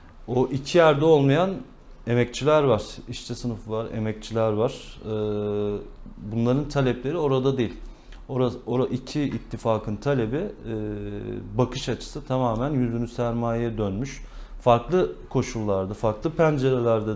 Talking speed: 100 wpm